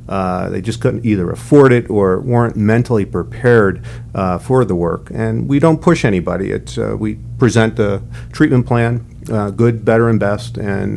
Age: 40-59